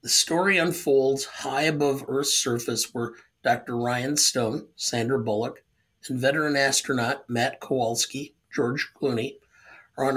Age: 50-69